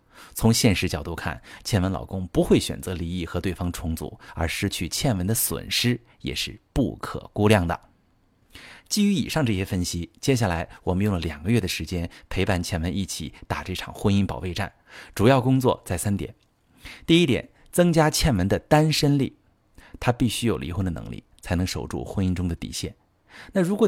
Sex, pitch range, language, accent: male, 90-120 Hz, Chinese, native